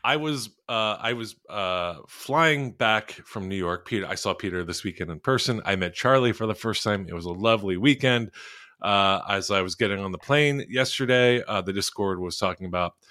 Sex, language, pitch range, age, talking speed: male, English, 95-125 Hz, 30-49, 210 wpm